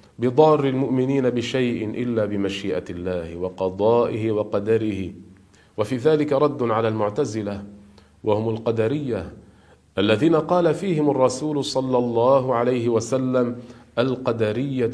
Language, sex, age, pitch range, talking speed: Arabic, male, 40-59, 105-135 Hz, 95 wpm